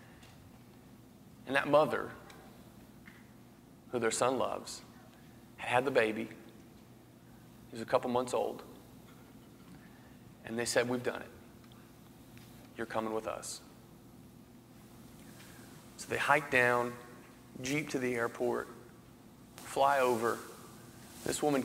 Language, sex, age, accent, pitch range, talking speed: English, male, 30-49, American, 115-125 Hz, 105 wpm